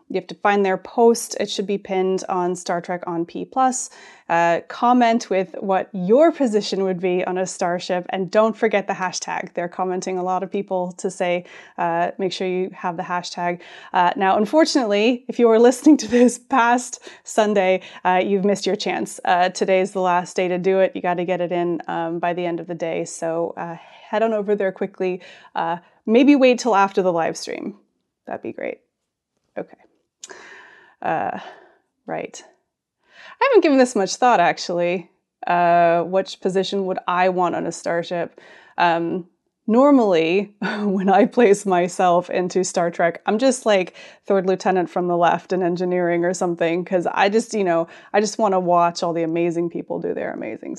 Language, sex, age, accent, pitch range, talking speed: English, female, 20-39, American, 180-210 Hz, 185 wpm